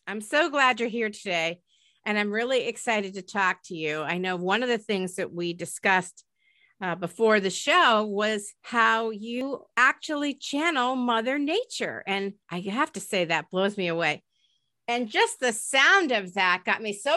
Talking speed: 180 wpm